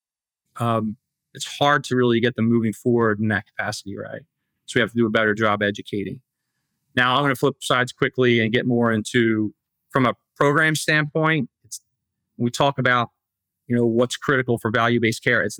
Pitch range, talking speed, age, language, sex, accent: 110-125 Hz, 190 wpm, 40-59, English, male, American